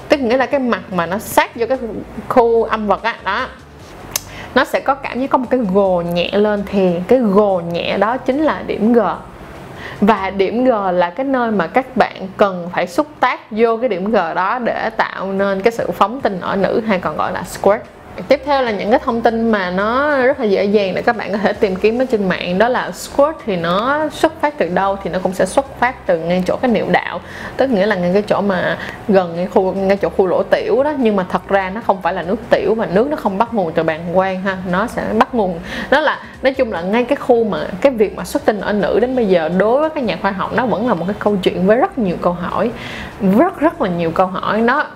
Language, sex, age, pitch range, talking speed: Vietnamese, female, 20-39, 190-255 Hz, 260 wpm